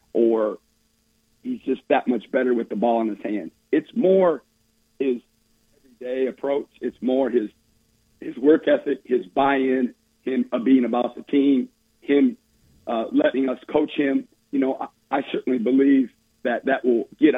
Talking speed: 160 wpm